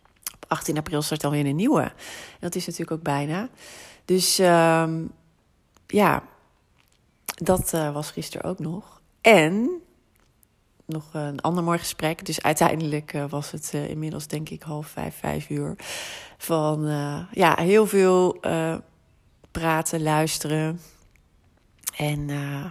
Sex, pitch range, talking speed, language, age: female, 150-185 Hz, 130 wpm, Dutch, 30-49